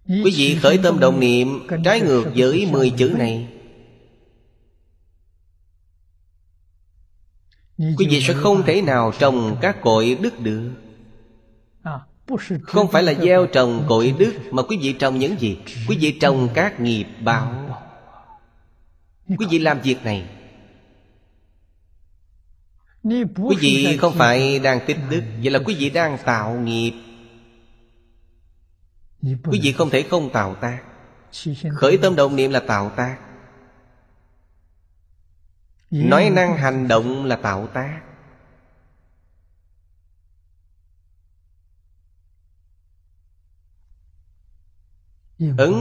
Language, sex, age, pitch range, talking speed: Vietnamese, male, 30-49, 85-135 Hz, 110 wpm